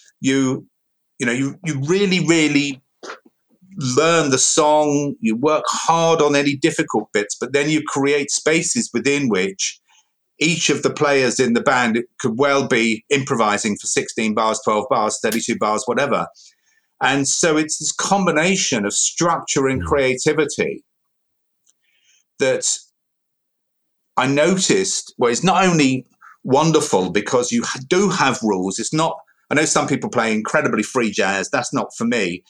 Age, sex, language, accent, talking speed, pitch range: 50-69, male, English, British, 145 wpm, 125-160 Hz